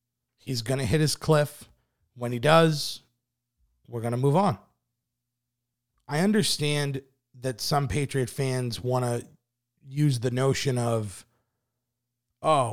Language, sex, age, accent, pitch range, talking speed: English, male, 30-49, American, 120-150 Hz, 125 wpm